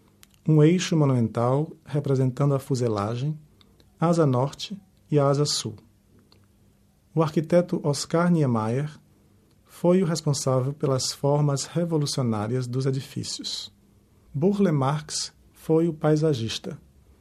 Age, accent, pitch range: 40-59, Brazilian, 115-160 Hz